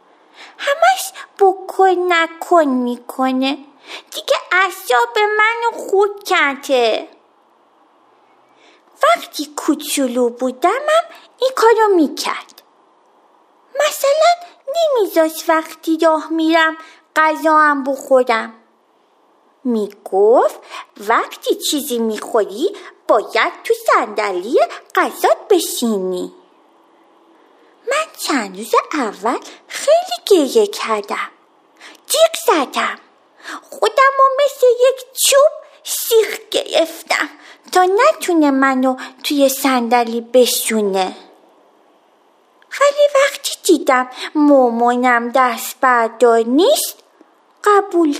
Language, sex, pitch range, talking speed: Persian, female, 270-375 Hz, 75 wpm